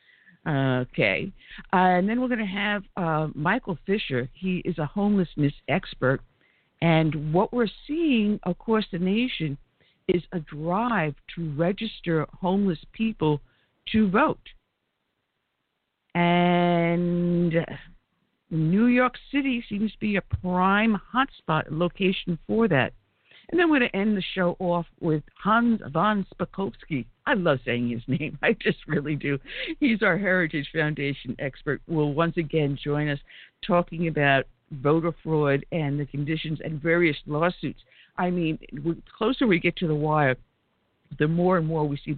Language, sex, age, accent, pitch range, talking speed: English, female, 60-79, American, 150-200 Hz, 145 wpm